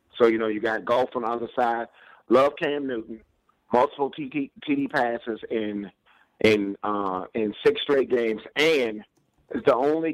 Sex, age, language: male, 50-69, English